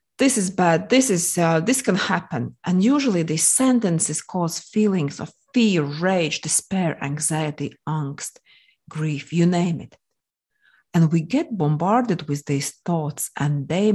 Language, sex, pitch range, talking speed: English, female, 155-210 Hz, 145 wpm